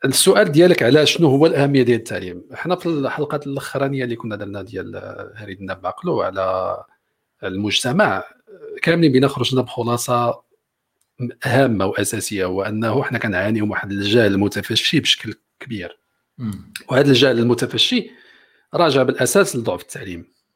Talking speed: 120 wpm